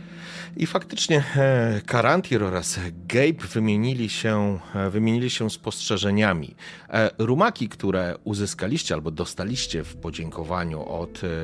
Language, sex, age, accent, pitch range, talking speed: Polish, male, 30-49, native, 90-130 Hz, 95 wpm